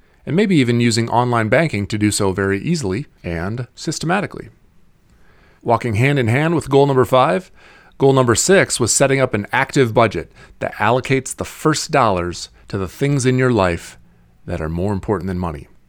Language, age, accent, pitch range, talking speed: English, 30-49, American, 100-135 Hz, 180 wpm